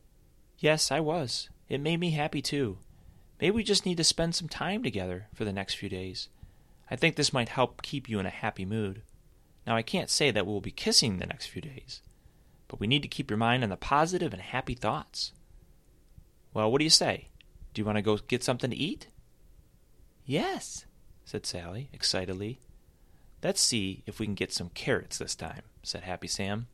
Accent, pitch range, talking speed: American, 95-140 Hz, 200 wpm